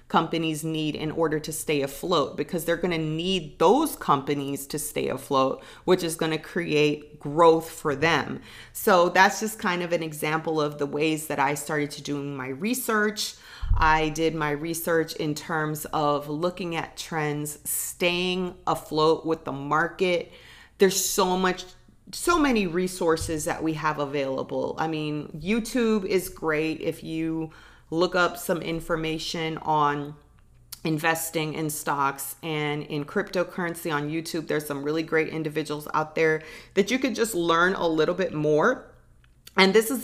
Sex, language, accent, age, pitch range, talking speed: female, English, American, 30-49, 150-175 Hz, 160 wpm